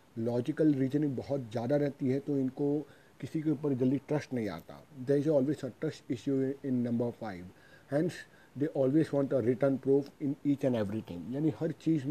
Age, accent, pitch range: 40-59, native, 125-145 Hz